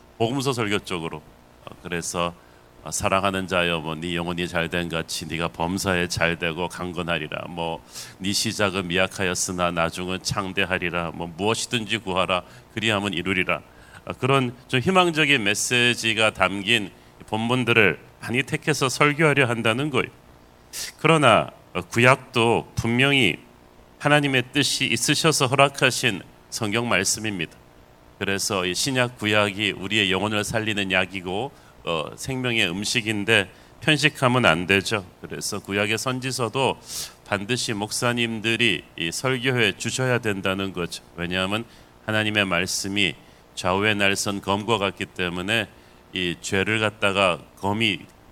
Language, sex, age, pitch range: Korean, male, 40-59, 85-120 Hz